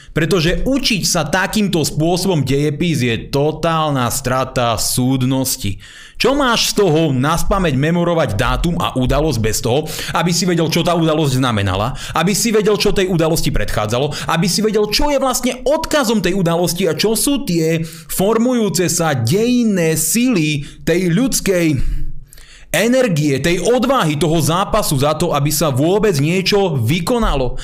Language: Slovak